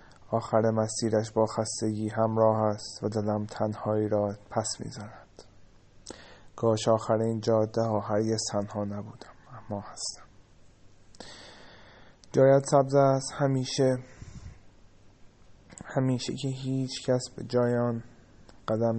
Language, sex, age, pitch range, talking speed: Persian, male, 20-39, 110-125 Hz, 110 wpm